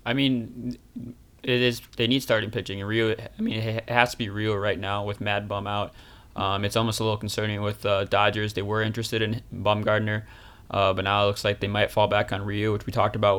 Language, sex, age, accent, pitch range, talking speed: English, male, 20-39, American, 105-120 Hz, 240 wpm